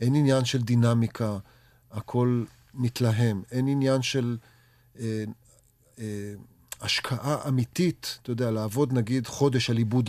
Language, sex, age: English, male, 40-59